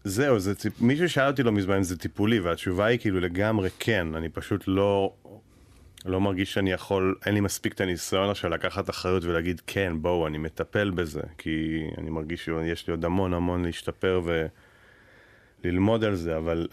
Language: Hebrew